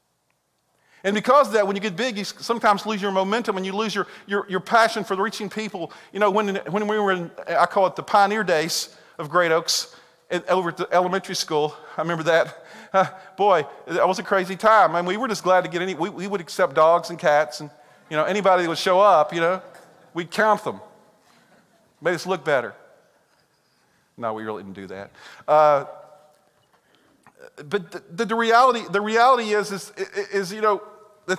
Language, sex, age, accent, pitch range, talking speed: English, male, 40-59, American, 180-220 Hz, 210 wpm